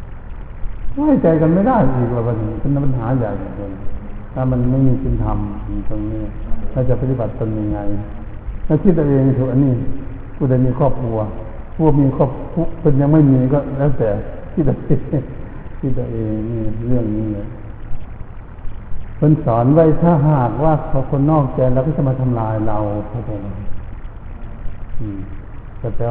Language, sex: Thai, male